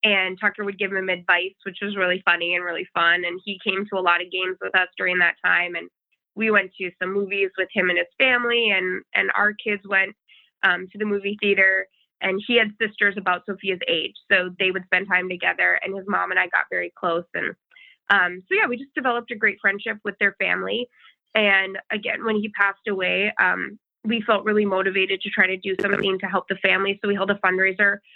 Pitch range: 185-205 Hz